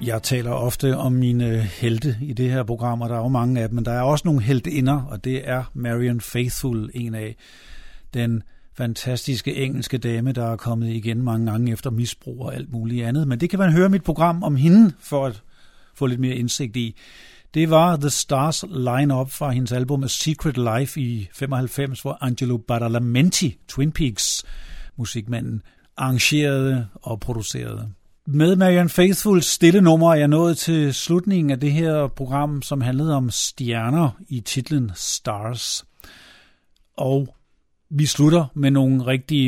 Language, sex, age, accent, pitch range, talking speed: Danish, male, 50-69, native, 120-145 Hz, 170 wpm